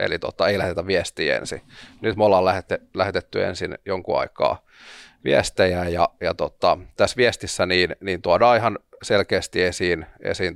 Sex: male